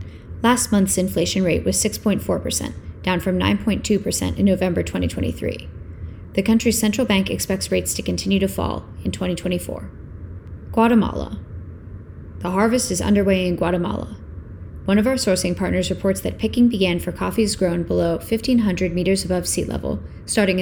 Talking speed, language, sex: 145 wpm, English, female